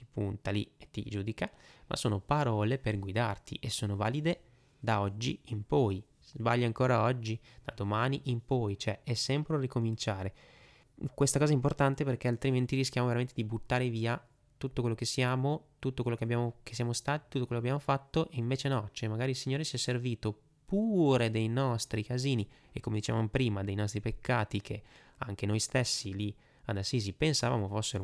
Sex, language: male, Italian